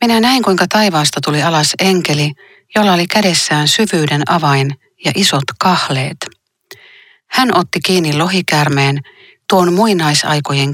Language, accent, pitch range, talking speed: Finnish, native, 145-185 Hz, 115 wpm